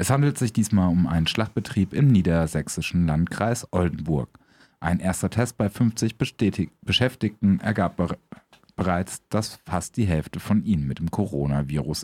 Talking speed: 145 wpm